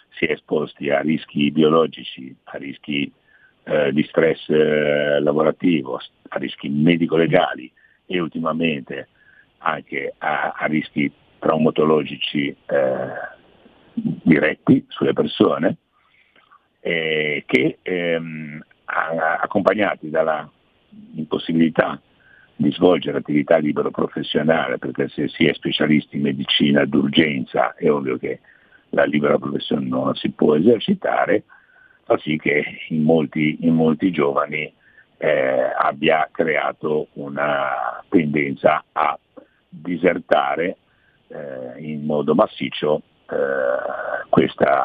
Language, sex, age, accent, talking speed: Italian, male, 60-79, native, 105 wpm